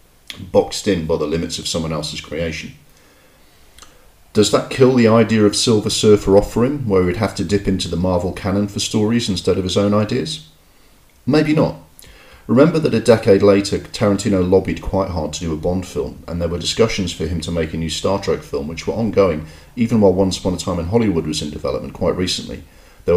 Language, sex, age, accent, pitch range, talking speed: English, male, 40-59, British, 80-105 Hz, 205 wpm